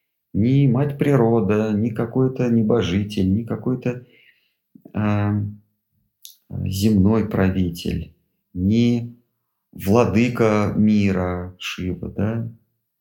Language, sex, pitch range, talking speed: Russian, male, 100-125 Hz, 65 wpm